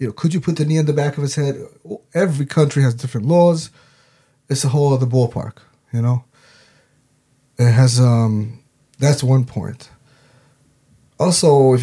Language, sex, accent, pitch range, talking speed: German, male, American, 125-150 Hz, 165 wpm